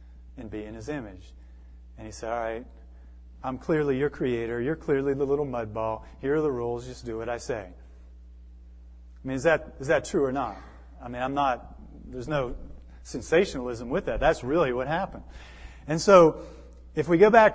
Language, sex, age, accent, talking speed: English, male, 40-59, American, 195 wpm